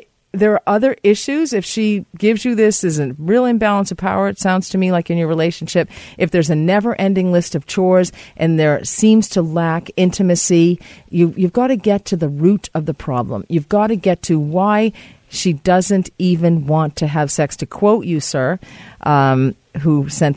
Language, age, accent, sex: English, 40-59, American, female